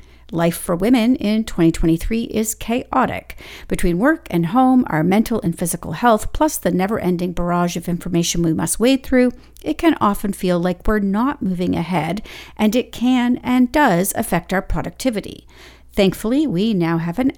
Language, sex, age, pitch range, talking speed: English, female, 50-69, 175-250 Hz, 165 wpm